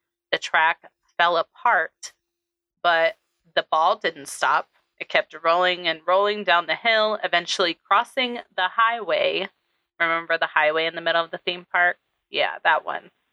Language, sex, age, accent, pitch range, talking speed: English, female, 30-49, American, 160-220 Hz, 155 wpm